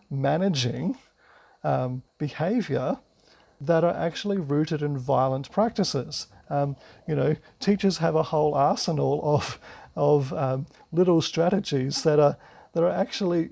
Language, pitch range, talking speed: English, 140-170 Hz, 125 wpm